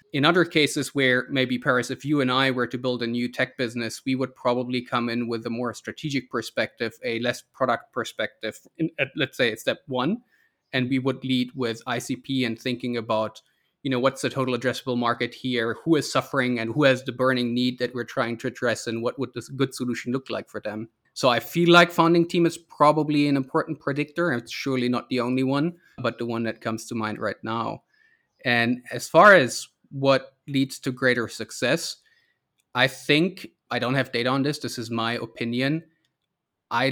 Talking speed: 210 wpm